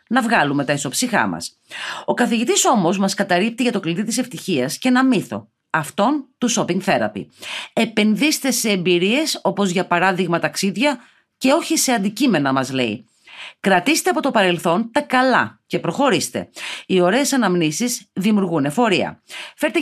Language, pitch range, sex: Greek, 175-240 Hz, female